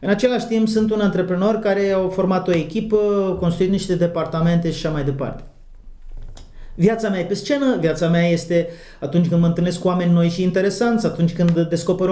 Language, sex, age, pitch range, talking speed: Romanian, male, 30-49, 150-205 Hz, 190 wpm